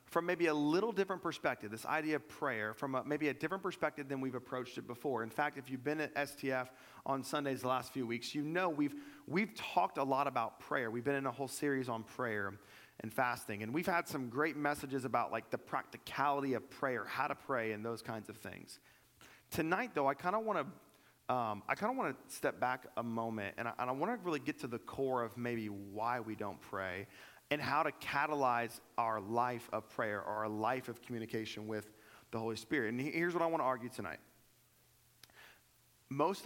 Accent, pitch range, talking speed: American, 115-145 Hz, 205 wpm